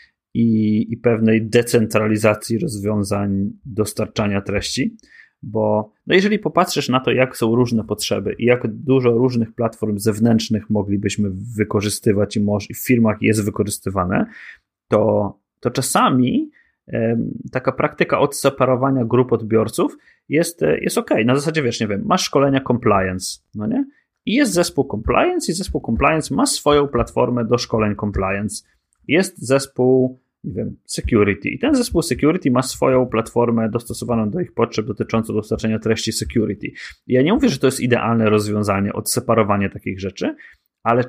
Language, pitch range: Polish, 110-140 Hz